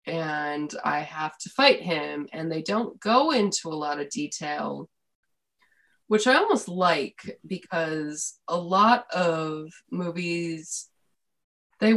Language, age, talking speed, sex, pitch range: English, 20-39, 125 wpm, female, 155-180 Hz